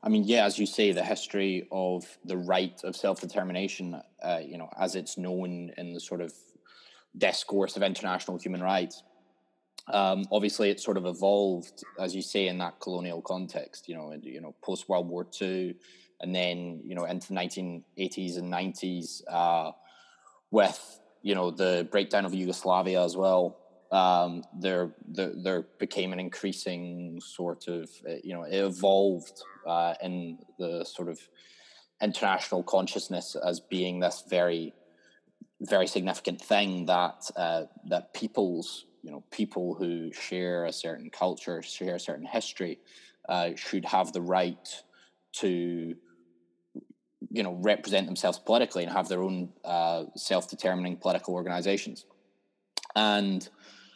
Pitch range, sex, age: 85-95 Hz, male, 20-39